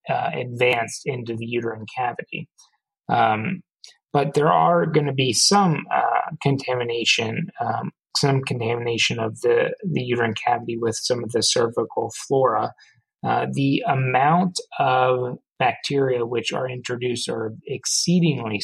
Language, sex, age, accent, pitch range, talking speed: English, male, 30-49, American, 115-150 Hz, 130 wpm